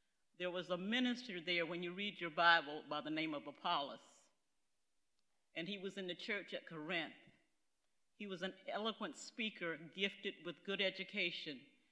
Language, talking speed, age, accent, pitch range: English, 160 wpm, 50-69, American, 170-200 Hz